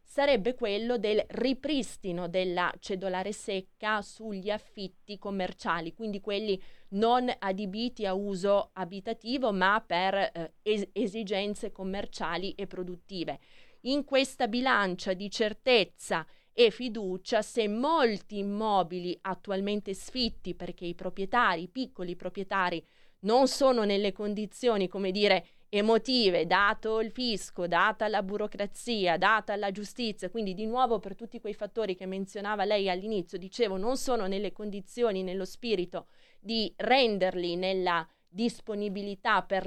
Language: Italian